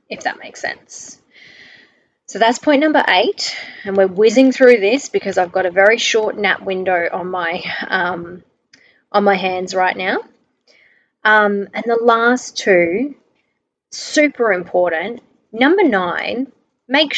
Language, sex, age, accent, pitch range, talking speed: English, female, 20-39, Australian, 185-250 Hz, 140 wpm